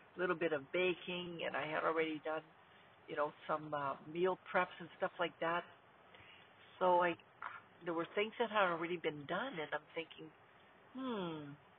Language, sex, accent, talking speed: English, female, American, 170 wpm